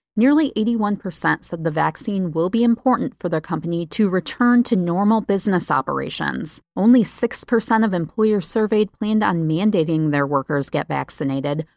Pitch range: 175-230 Hz